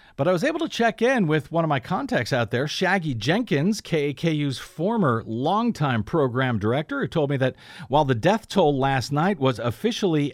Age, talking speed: 50-69, 190 wpm